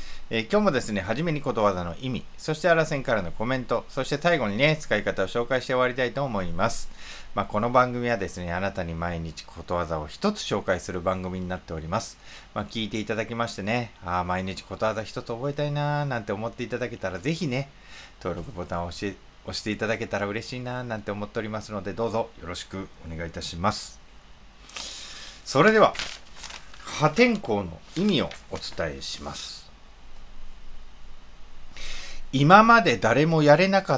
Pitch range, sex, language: 85-125 Hz, male, Japanese